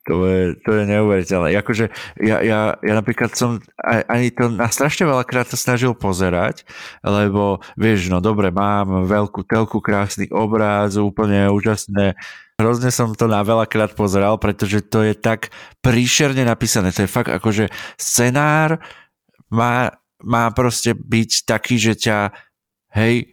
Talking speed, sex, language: 140 wpm, male, Slovak